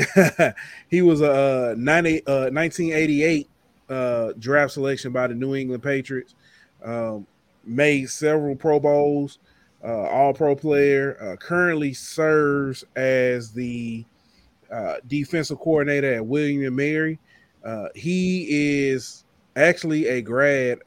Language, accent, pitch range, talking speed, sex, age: English, American, 130-170 Hz, 110 wpm, male, 20-39